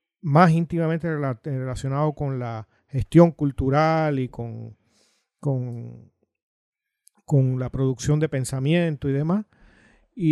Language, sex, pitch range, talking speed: Spanish, male, 125-160 Hz, 100 wpm